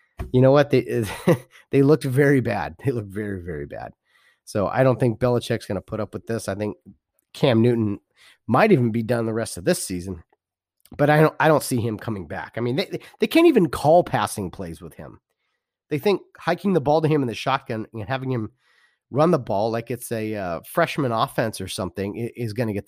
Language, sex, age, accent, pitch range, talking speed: English, male, 30-49, American, 105-140 Hz, 225 wpm